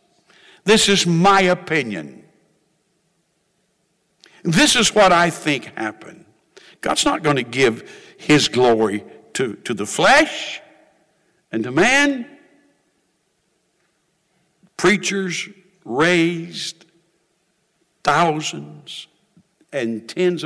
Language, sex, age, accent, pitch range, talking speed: English, male, 60-79, American, 160-250 Hz, 85 wpm